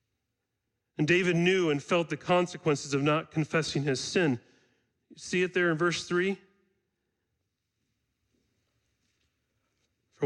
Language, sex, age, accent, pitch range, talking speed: English, male, 40-59, American, 110-165 Hz, 110 wpm